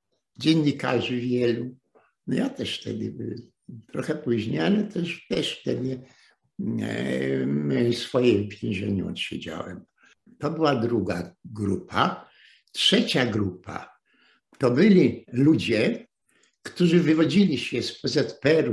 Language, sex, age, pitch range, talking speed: Polish, male, 60-79, 120-185 Hz, 110 wpm